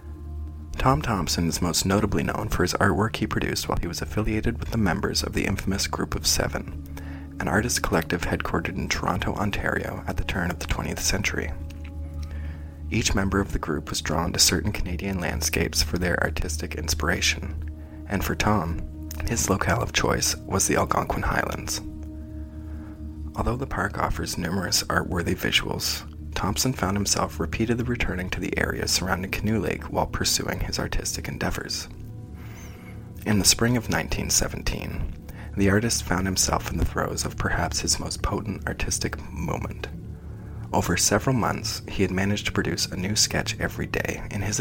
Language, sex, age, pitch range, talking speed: English, male, 30-49, 80-100 Hz, 165 wpm